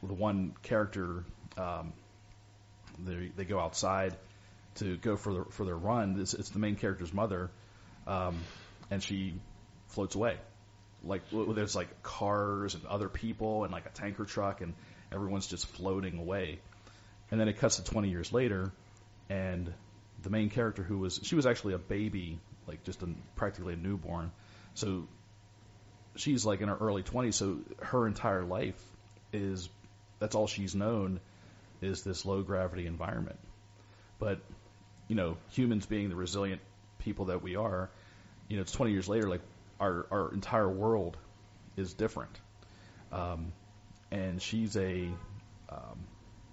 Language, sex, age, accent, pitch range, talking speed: English, male, 40-59, American, 95-105 Hz, 150 wpm